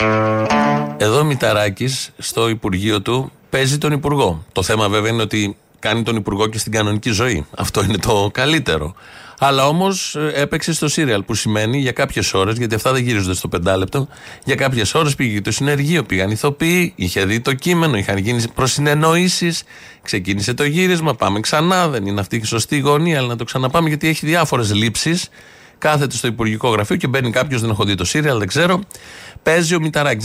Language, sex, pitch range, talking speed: Greek, male, 110-150 Hz, 185 wpm